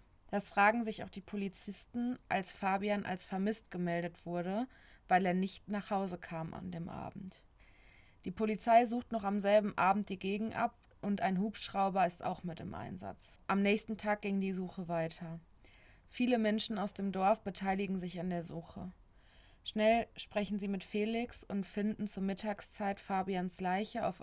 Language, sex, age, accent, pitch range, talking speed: German, female, 20-39, German, 180-210 Hz, 170 wpm